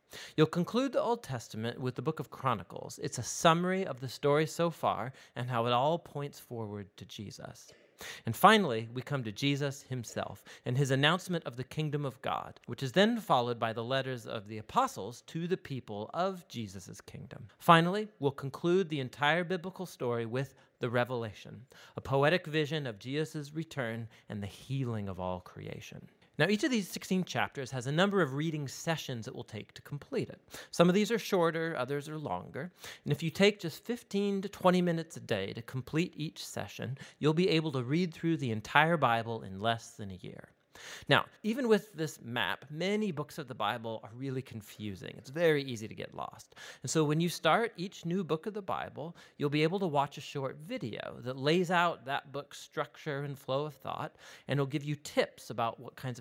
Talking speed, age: 205 wpm, 30-49